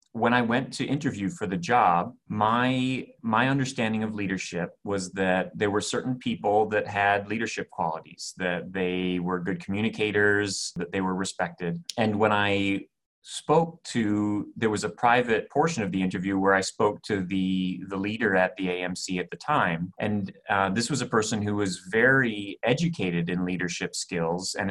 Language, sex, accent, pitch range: English, male, American, 90-105 Hz